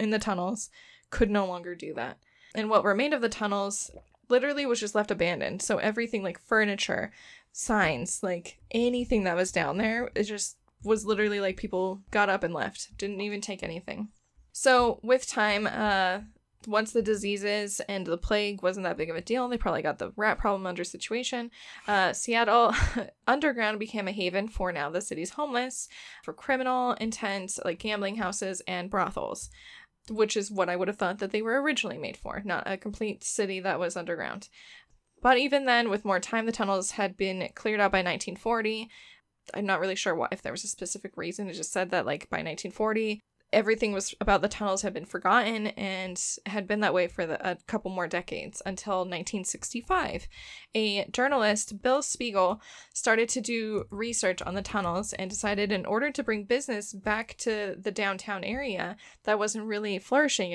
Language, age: English, 10-29